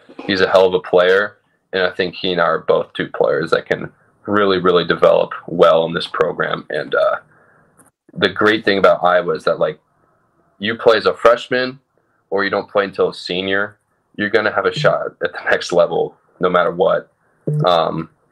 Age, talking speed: 20-39, 195 wpm